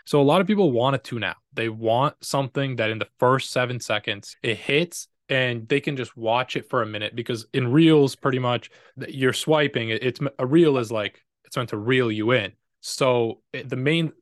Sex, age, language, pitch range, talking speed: male, 20-39, English, 115-135 Hz, 210 wpm